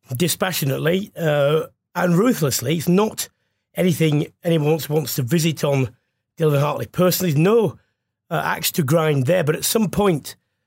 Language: English